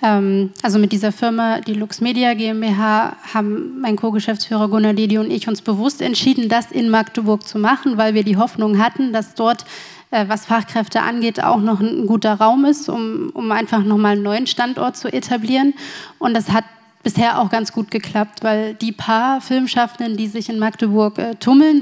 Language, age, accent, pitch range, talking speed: German, 20-39, German, 215-235 Hz, 180 wpm